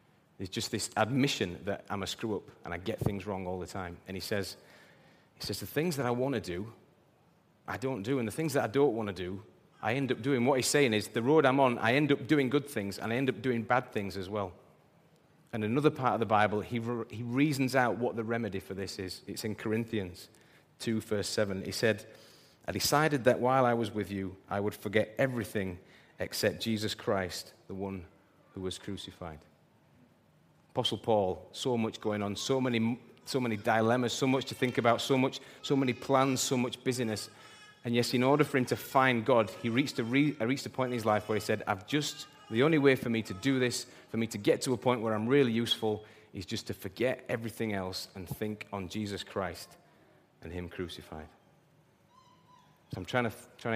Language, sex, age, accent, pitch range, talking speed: English, male, 30-49, British, 100-130 Hz, 220 wpm